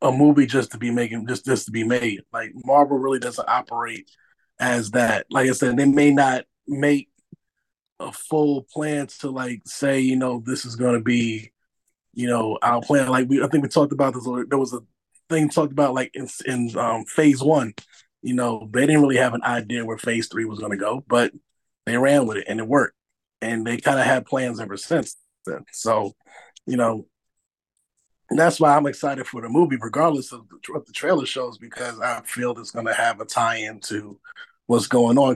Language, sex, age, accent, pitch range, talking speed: English, male, 20-39, American, 120-140 Hz, 215 wpm